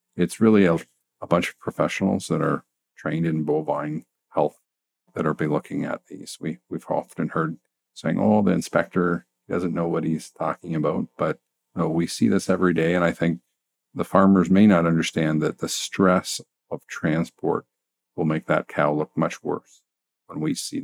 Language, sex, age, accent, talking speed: English, male, 50-69, American, 185 wpm